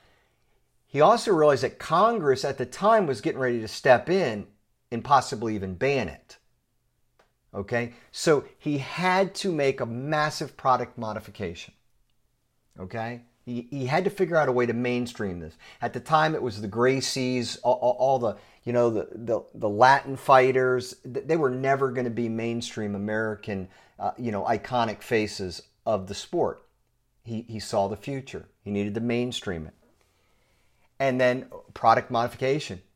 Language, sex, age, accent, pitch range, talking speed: English, male, 50-69, American, 105-135 Hz, 160 wpm